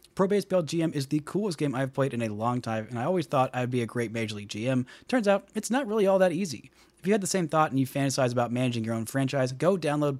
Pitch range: 120-150 Hz